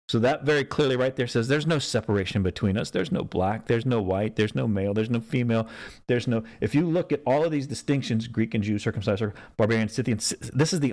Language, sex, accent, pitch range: English, male, American, 110-140 Hz